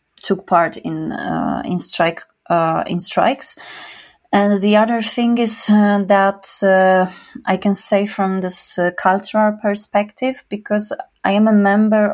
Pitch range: 180-210 Hz